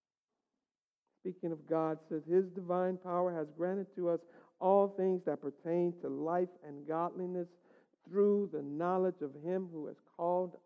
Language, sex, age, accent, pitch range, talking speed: English, male, 60-79, American, 170-230 Hz, 150 wpm